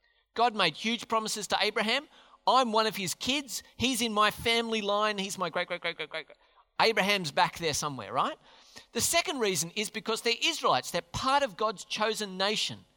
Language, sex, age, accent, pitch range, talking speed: English, male, 40-59, Australian, 170-255 Hz, 195 wpm